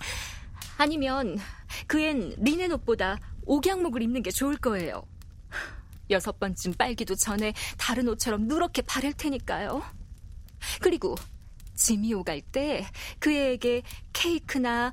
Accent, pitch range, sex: native, 185-255 Hz, female